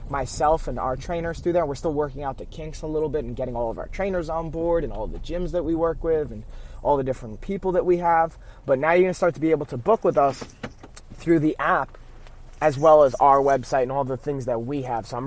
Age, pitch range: 20-39, 120-155 Hz